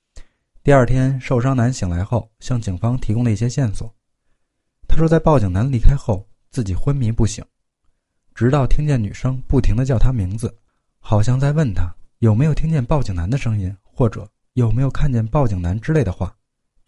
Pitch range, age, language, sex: 105-135 Hz, 20-39, Chinese, male